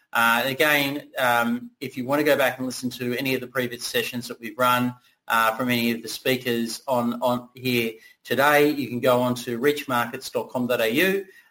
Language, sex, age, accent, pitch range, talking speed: English, male, 30-49, Australian, 120-135 Hz, 195 wpm